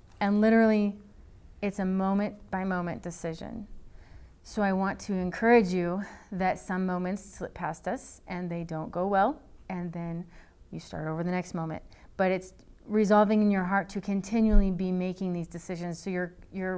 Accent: American